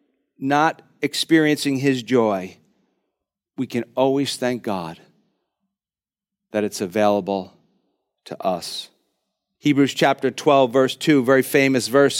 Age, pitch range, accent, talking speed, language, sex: 50-69, 120-155 Hz, American, 110 wpm, English, male